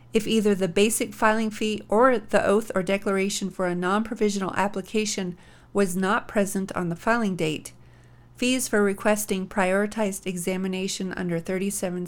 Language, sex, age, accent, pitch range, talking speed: English, female, 40-59, American, 185-220 Hz, 145 wpm